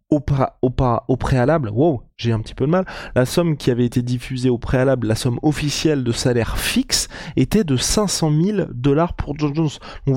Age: 20-39